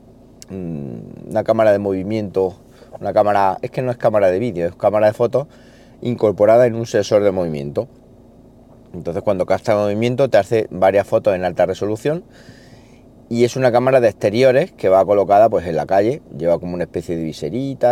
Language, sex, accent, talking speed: Spanish, male, Spanish, 180 wpm